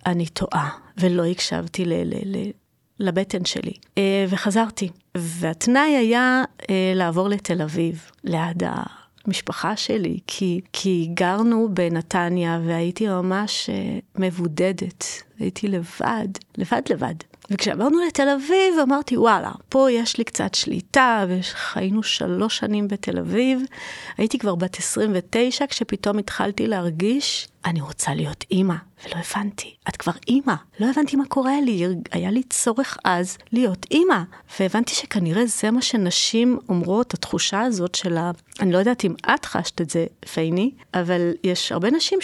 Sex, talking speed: female, 140 wpm